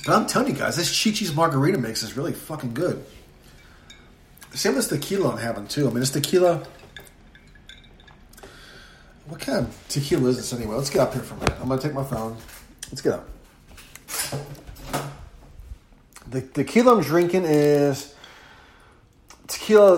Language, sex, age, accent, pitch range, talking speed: English, male, 30-49, American, 125-155 Hz, 155 wpm